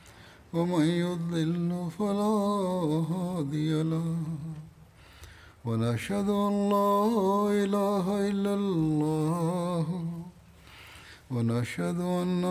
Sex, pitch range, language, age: male, 155-195 Hz, Tamil, 50-69